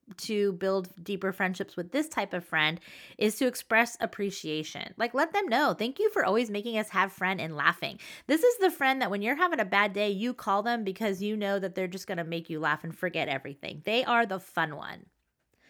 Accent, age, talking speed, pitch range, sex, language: American, 20-39, 230 wpm, 190-245 Hz, female, English